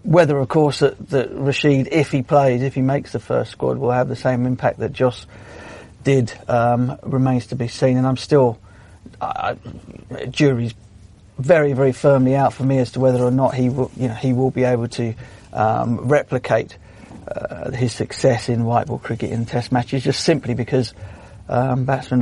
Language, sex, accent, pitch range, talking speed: English, male, British, 110-130 Hz, 190 wpm